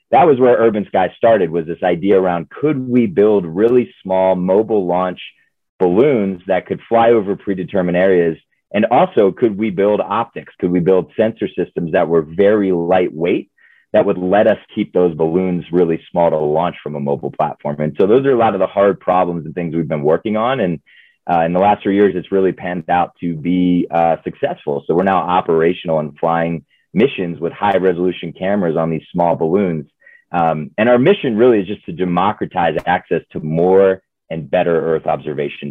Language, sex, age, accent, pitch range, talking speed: English, male, 30-49, American, 85-105 Hz, 195 wpm